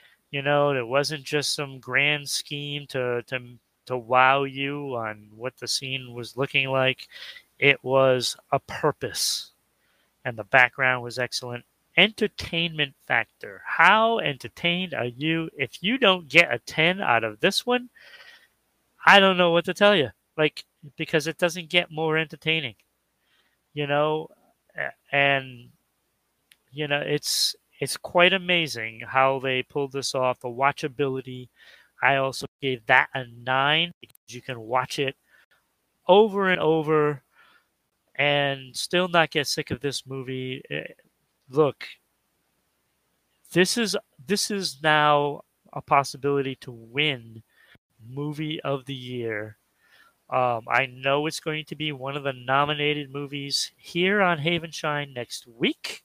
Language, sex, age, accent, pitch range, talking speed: English, male, 30-49, American, 130-165 Hz, 135 wpm